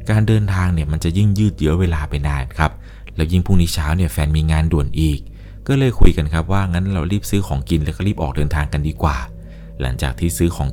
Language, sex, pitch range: Thai, male, 80-100 Hz